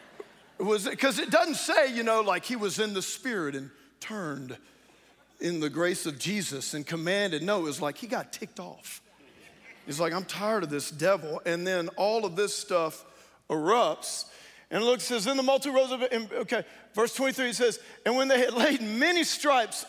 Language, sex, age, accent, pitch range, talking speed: English, male, 50-69, American, 170-220 Hz, 190 wpm